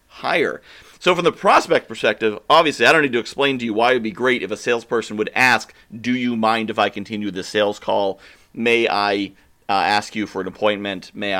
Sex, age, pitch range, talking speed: male, 40-59, 100-135 Hz, 215 wpm